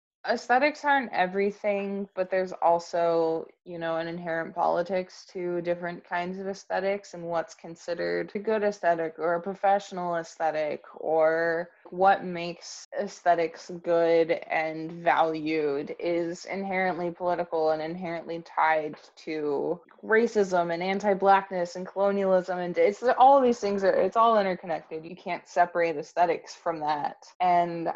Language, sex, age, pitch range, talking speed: English, female, 20-39, 170-200 Hz, 130 wpm